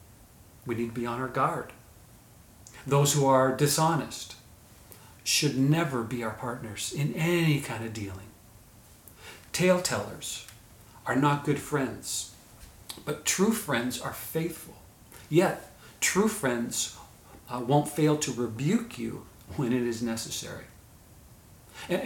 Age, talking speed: 40-59, 120 wpm